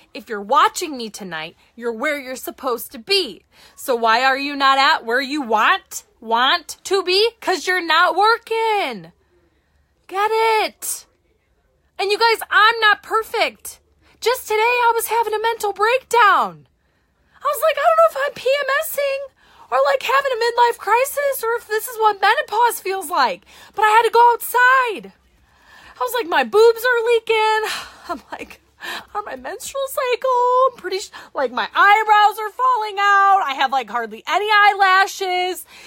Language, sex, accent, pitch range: English, female, American, 270-430 Hz